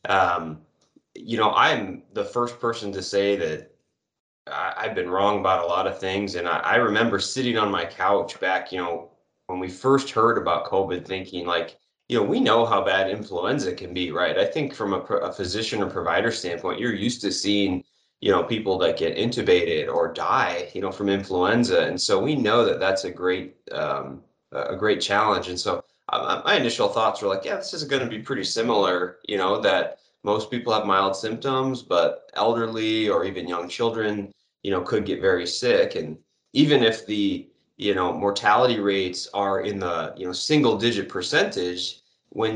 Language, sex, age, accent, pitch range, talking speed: English, male, 20-39, American, 95-125 Hz, 195 wpm